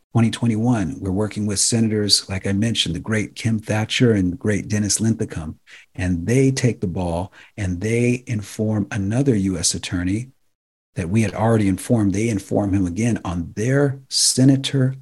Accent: American